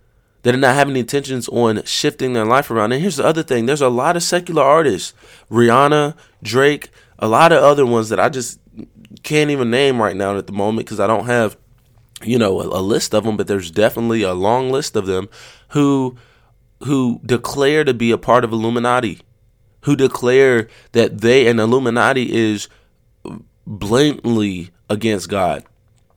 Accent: American